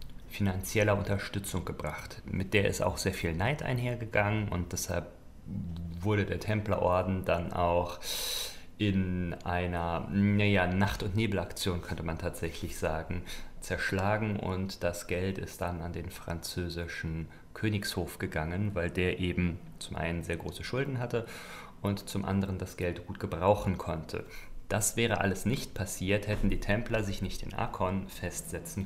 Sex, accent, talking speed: male, German, 135 wpm